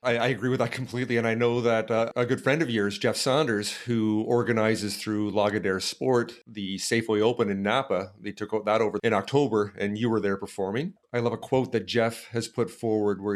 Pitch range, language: 110-125 Hz, English